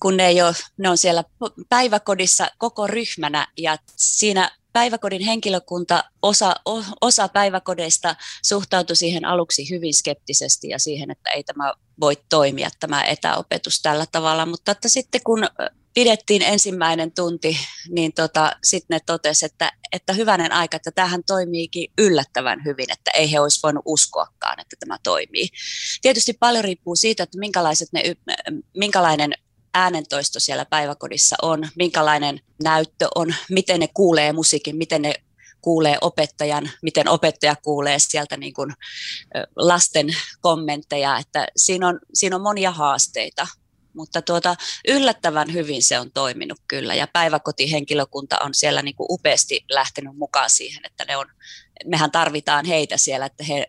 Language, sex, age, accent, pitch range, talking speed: Finnish, female, 30-49, native, 150-185 Hz, 145 wpm